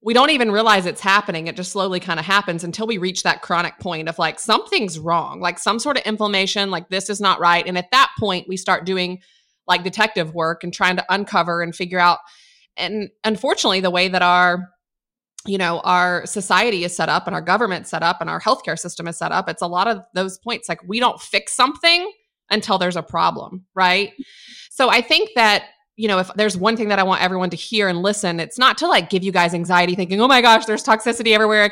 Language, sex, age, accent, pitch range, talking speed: English, female, 20-39, American, 180-220 Hz, 235 wpm